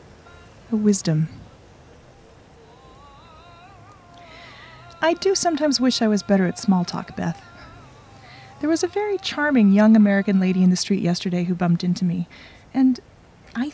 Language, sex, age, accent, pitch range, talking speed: English, female, 30-49, American, 170-245 Hz, 135 wpm